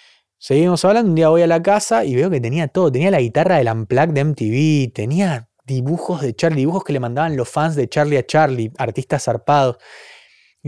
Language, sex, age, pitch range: Spanish, male, 20-39, 130-180 Hz